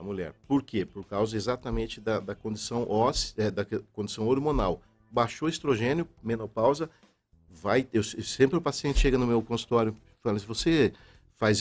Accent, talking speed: Brazilian, 170 wpm